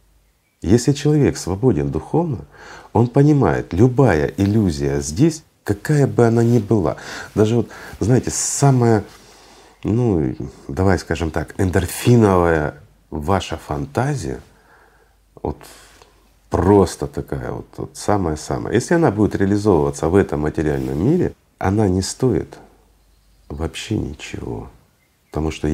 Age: 40-59